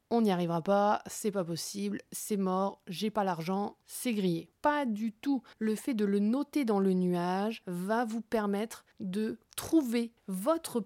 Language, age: French, 30-49